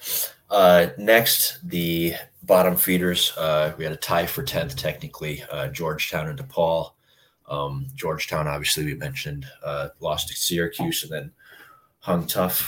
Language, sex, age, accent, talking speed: English, male, 20-39, American, 140 wpm